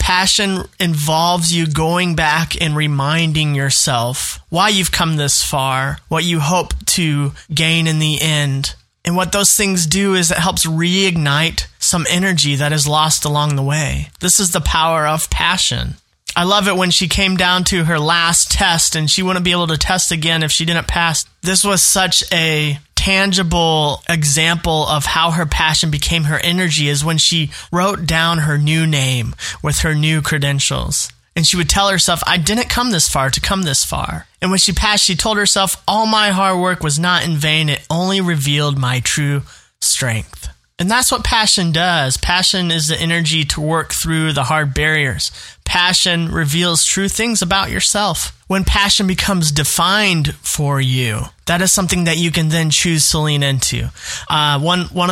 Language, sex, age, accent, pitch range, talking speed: English, male, 20-39, American, 150-180 Hz, 185 wpm